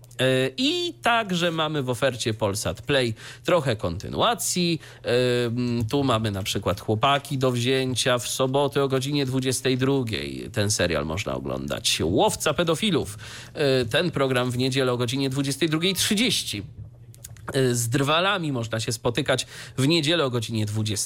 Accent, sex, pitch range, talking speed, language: native, male, 115-160 Hz, 125 wpm, Polish